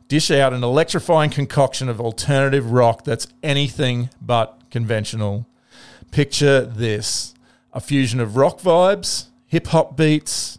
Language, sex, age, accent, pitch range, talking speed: English, male, 40-59, Australian, 120-145 Hz, 120 wpm